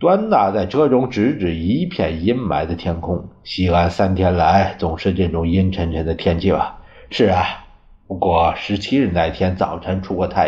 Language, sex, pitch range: Chinese, male, 85-95 Hz